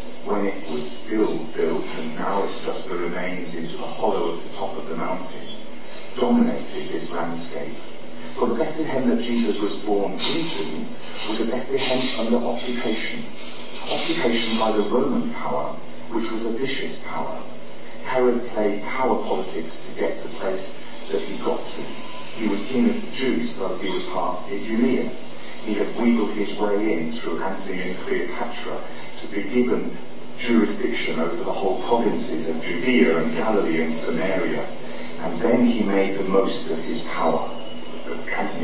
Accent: British